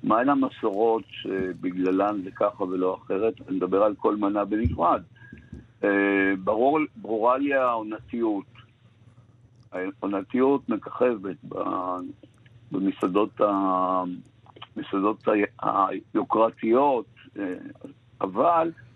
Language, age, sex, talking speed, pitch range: Hebrew, 60-79, male, 65 wpm, 100-125 Hz